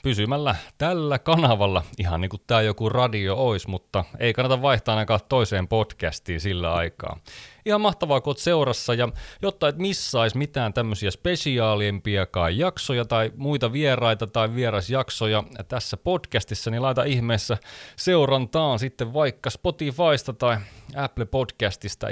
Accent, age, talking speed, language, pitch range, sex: native, 30-49, 130 wpm, Finnish, 100-135 Hz, male